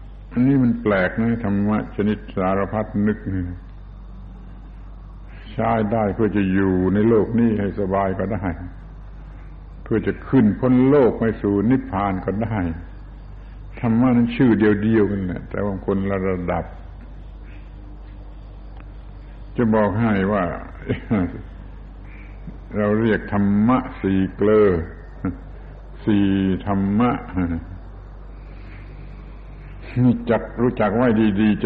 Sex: male